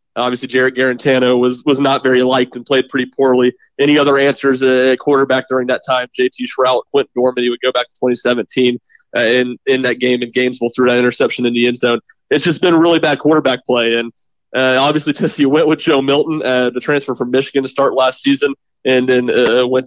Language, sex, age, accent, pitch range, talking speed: English, male, 20-39, American, 125-140 Hz, 215 wpm